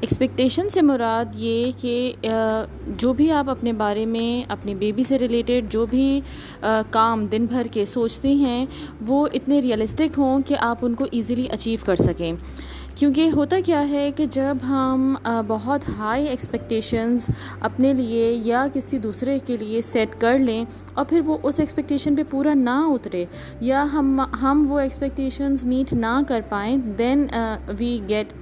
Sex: female